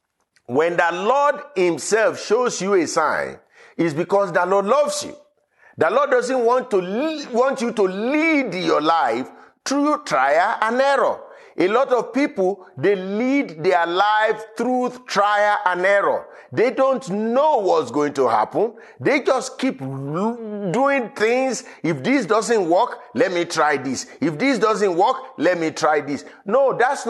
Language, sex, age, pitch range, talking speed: English, male, 50-69, 175-260 Hz, 155 wpm